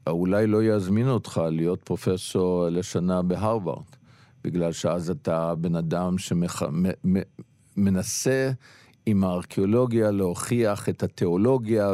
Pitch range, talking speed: 90-115 Hz, 100 wpm